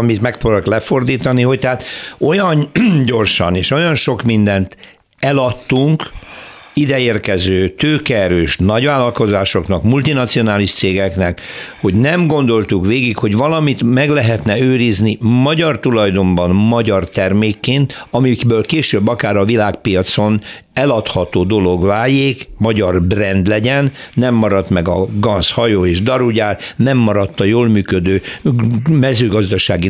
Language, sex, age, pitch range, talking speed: Hungarian, male, 60-79, 100-130 Hz, 110 wpm